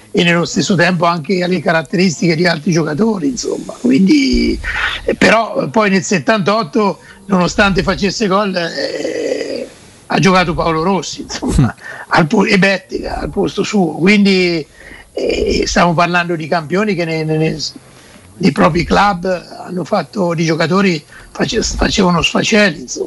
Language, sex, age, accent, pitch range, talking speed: Italian, male, 60-79, native, 175-210 Hz, 125 wpm